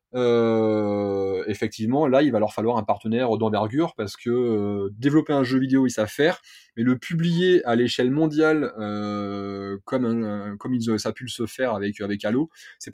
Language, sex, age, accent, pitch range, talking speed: French, male, 20-39, French, 110-135 Hz, 190 wpm